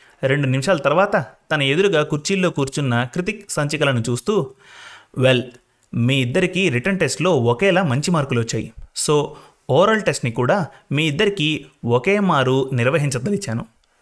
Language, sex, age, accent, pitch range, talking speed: Telugu, male, 30-49, native, 125-180 Hz, 120 wpm